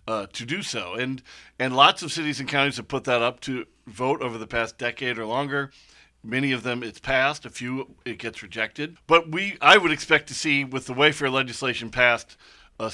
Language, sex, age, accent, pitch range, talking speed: English, male, 40-59, American, 115-135 Hz, 215 wpm